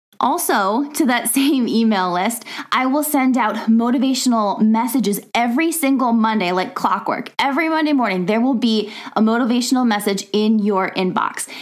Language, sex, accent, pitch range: English, female, American, 215-270 Hz